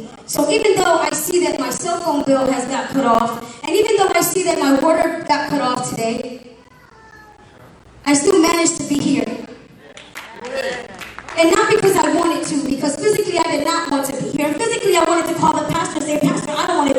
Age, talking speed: 20-39, 215 wpm